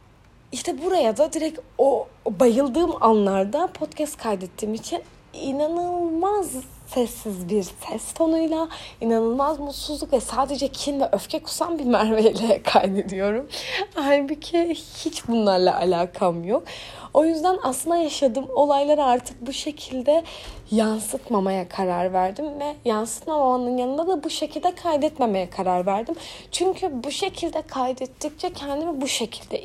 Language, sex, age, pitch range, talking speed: Turkish, female, 30-49, 225-320 Hz, 115 wpm